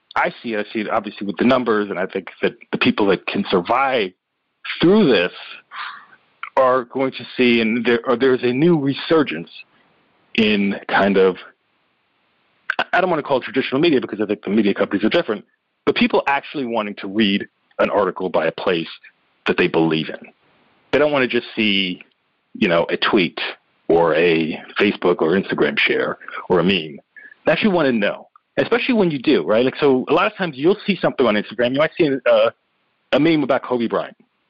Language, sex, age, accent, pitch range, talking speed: English, male, 50-69, American, 105-140 Hz, 200 wpm